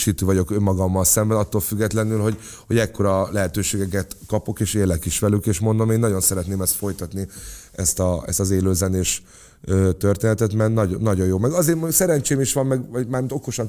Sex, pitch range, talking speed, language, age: male, 95-115 Hz, 175 wpm, Hungarian, 30-49